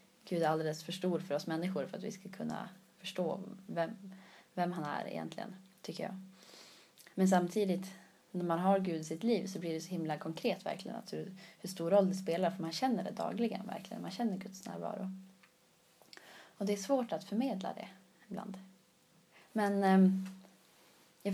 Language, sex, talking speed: Swedish, female, 180 wpm